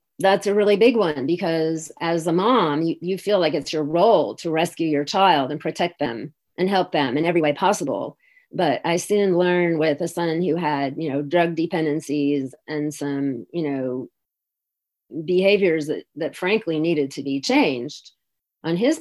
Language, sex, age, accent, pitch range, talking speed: English, female, 30-49, American, 155-185 Hz, 180 wpm